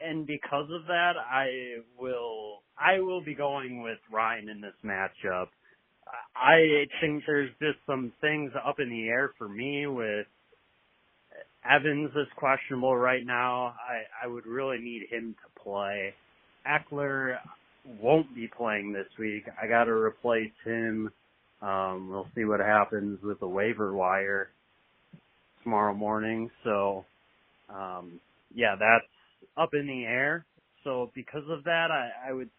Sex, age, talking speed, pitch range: male, 30-49, 145 wpm, 110-150 Hz